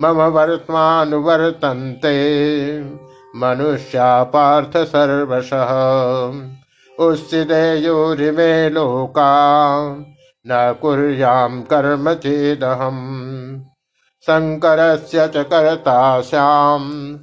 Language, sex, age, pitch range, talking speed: Hindi, male, 60-79, 130-155 Hz, 40 wpm